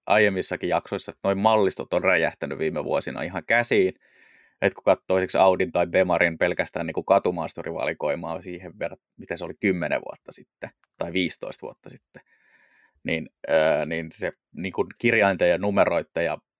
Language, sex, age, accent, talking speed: Finnish, male, 20-39, native, 135 wpm